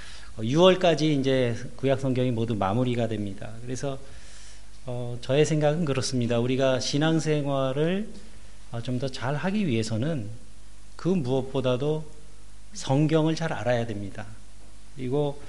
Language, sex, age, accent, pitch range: Korean, male, 40-59, native, 115-155 Hz